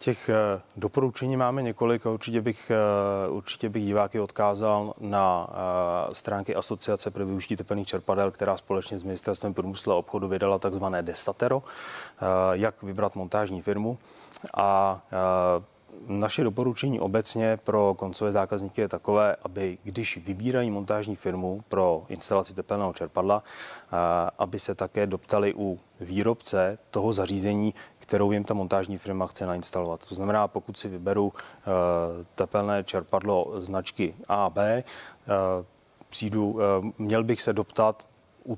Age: 30-49